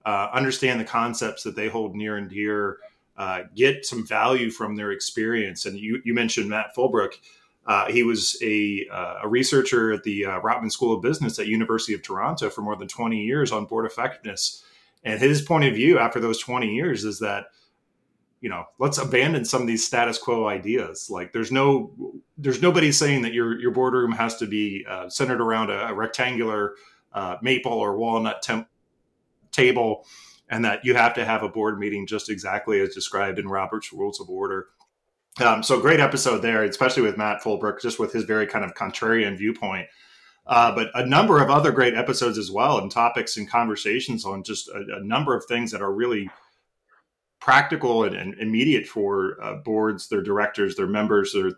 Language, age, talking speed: English, 30-49, 195 wpm